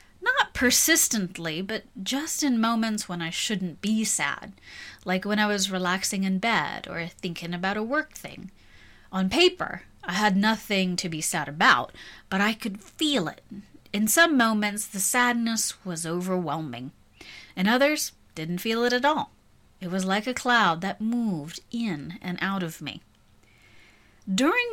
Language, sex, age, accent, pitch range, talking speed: English, female, 30-49, American, 180-230 Hz, 160 wpm